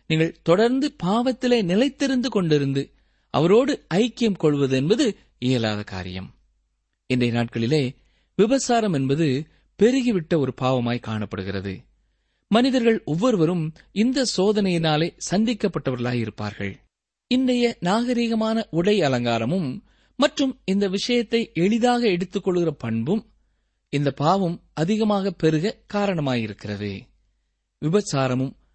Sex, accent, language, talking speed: male, native, Tamil, 85 wpm